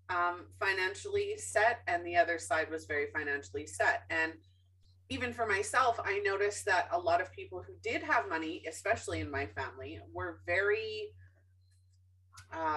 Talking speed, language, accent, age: 155 wpm, English, American, 30-49